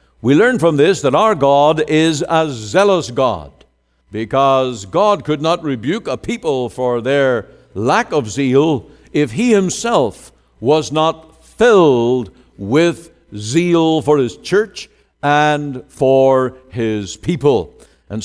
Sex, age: male, 60-79